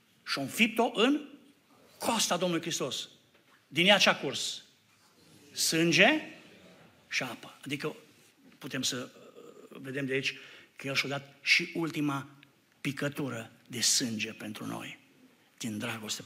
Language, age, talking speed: Romanian, 60-79, 120 wpm